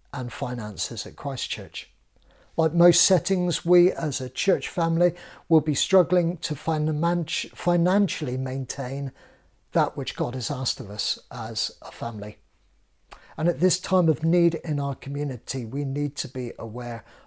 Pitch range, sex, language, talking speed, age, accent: 130-170 Hz, male, English, 145 wpm, 50-69, British